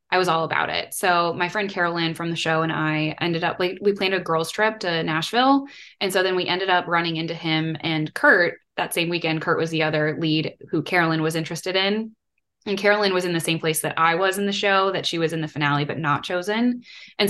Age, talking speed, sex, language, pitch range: 10-29, 245 wpm, female, English, 160-190 Hz